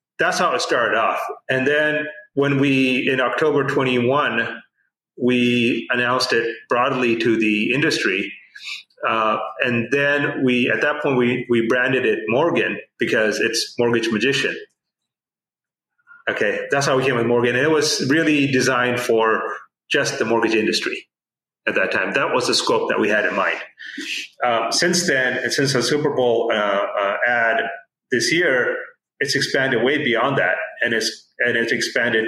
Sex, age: male, 30-49